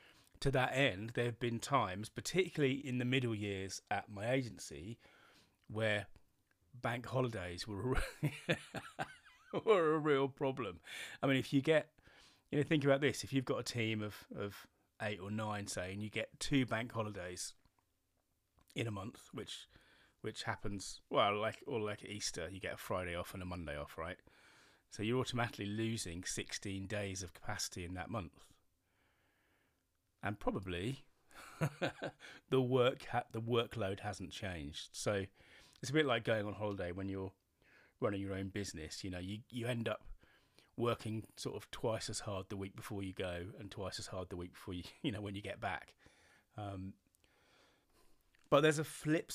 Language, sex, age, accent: English, male, 30-49, British